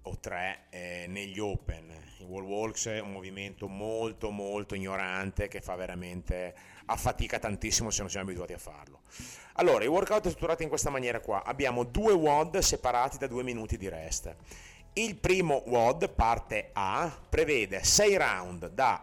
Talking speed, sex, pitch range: 165 wpm, male, 90-140 Hz